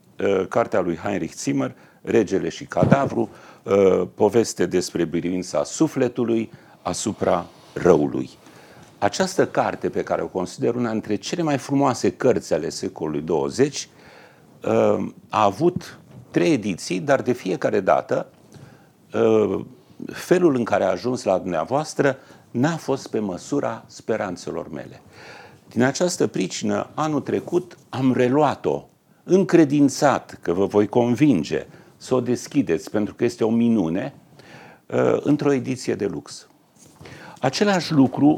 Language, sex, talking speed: English, male, 115 wpm